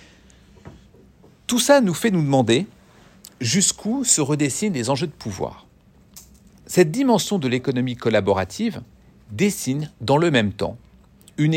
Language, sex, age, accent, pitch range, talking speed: French, male, 50-69, French, 115-170 Hz, 125 wpm